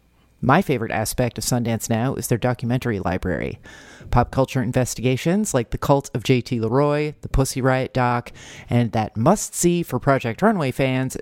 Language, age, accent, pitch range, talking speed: English, 40-59, American, 120-160 Hz, 160 wpm